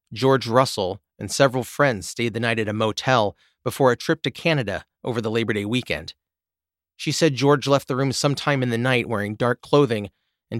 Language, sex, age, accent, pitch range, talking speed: English, male, 30-49, American, 100-140 Hz, 200 wpm